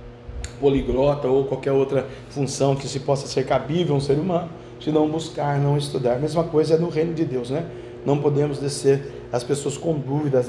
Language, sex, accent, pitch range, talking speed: Portuguese, male, Brazilian, 120-155 Hz, 200 wpm